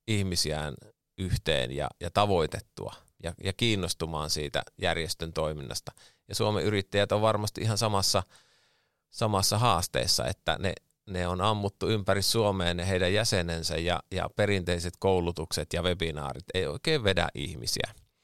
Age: 30-49